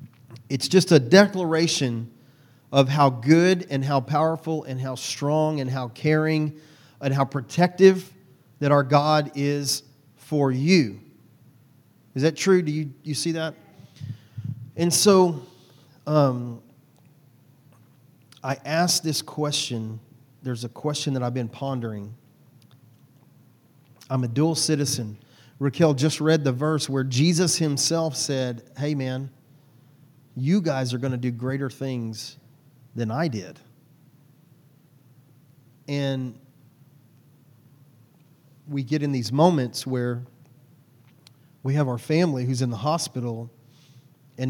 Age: 40-59